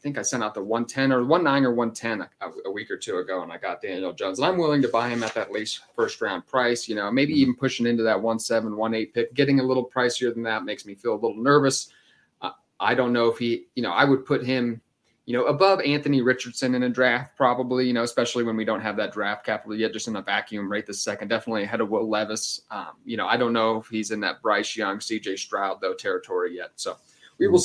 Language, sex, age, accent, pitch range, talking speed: English, male, 30-49, American, 115-130 Hz, 270 wpm